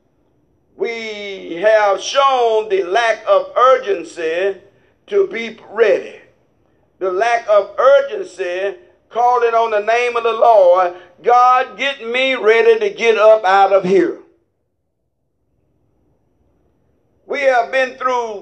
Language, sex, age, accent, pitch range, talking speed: English, male, 50-69, American, 240-350 Hz, 115 wpm